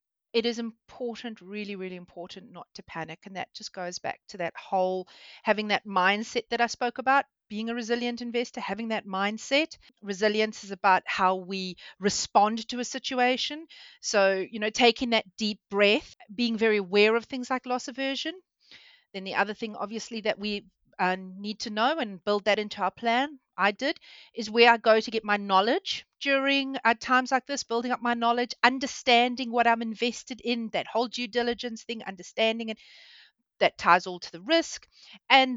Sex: female